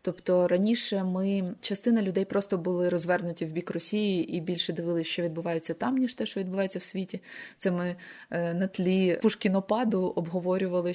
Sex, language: female, Ukrainian